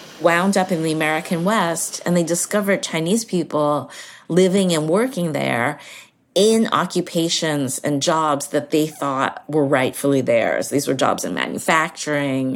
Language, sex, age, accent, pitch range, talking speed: English, female, 30-49, American, 145-180 Hz, 145 wpm